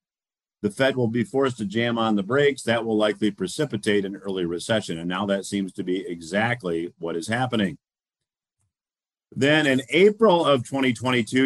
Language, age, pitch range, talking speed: English, 50-69, 100-130 Hz, 170 wpm